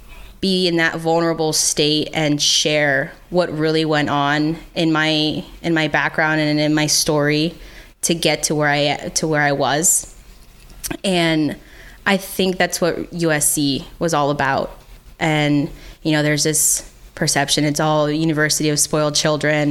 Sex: female